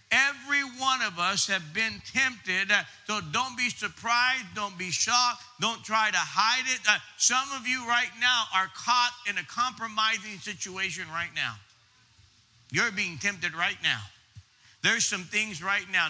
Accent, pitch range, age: American, 165-235 Hz, 50-69